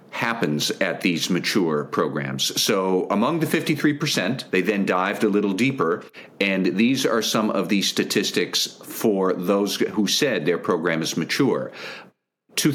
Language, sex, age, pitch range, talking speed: English, male, 50-69, 85-110 Hz, 145 wpm